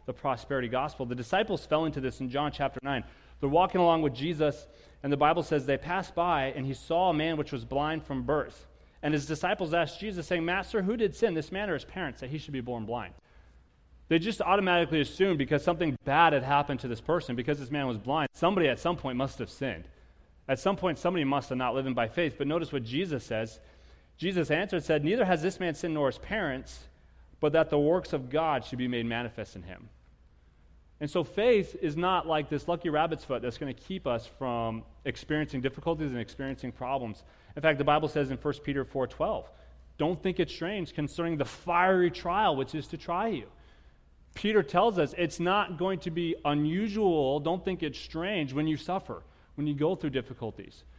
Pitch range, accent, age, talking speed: 120-170 Hz, American, 30-49, 215 wpm